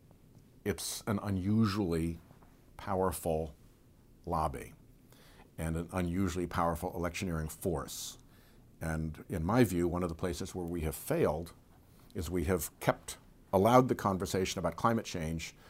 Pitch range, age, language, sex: 85-100 Hz, 60-79, English, male